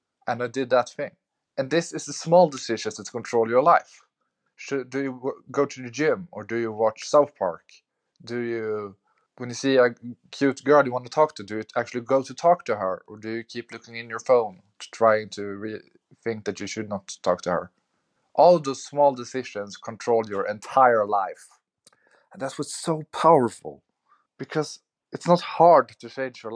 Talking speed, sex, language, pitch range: 200 wpm, male, English, 110-135 Hz